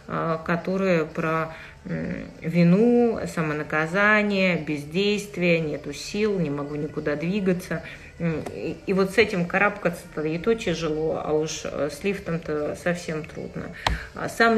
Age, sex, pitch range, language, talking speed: 30-49, female, 170-200 Hz, Russian, 105 wpm